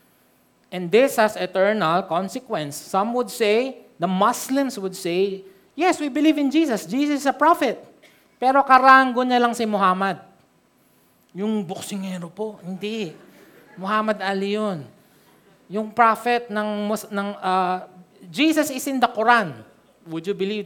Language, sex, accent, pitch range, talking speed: Filipino, male, native, 190-255 Hz, 140 wpm